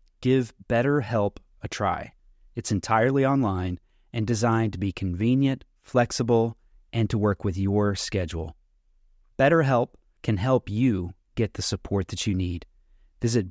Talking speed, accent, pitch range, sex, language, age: 135 wpm, American, 95-120 Hz, male, English, 30-49